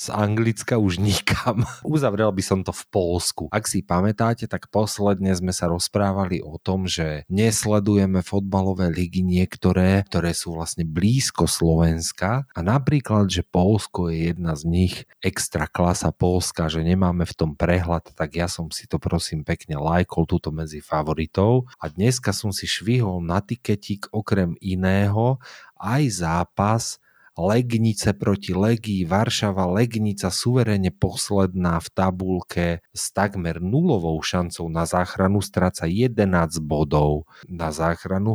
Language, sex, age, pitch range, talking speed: Slovak, male, 40-59, 85-105 Hz, 140 wpm